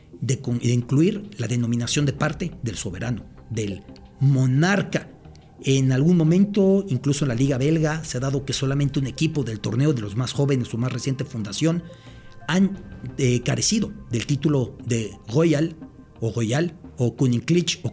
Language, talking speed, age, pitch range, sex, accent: English, 160 wpm, 40-59, 125-165 Hz, male, Mexican